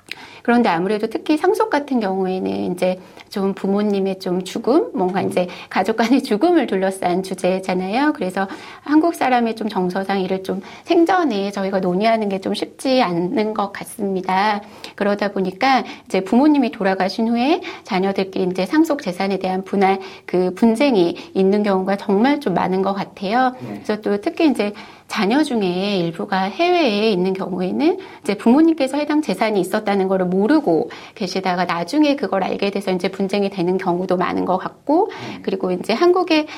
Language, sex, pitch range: Korean, female, 185-265 Hz